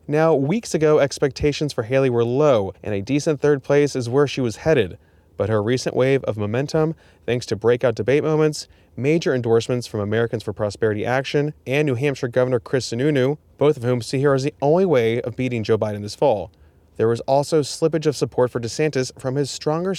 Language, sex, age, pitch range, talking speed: English, male, 30-49, 115-150 Hz, 205 wpm